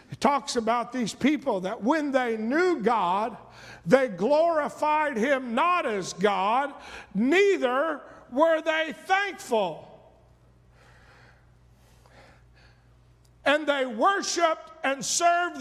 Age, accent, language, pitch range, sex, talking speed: 50-69, American, English, 240-365 Hz, male, 95 wpm